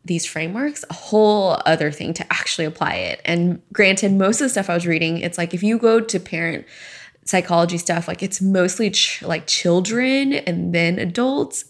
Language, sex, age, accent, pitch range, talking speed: English, female, 20-39, American, 170-200 Hz, 185 wpm